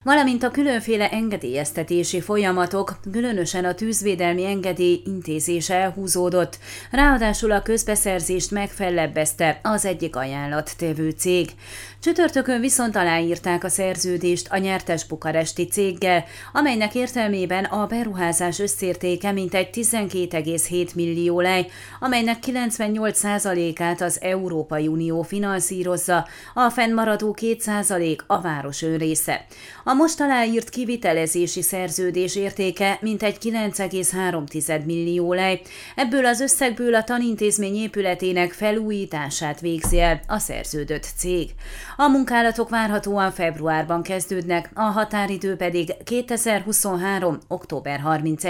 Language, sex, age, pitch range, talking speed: Hungarian, female, 30-49, 170-215 Hz, 100 wpm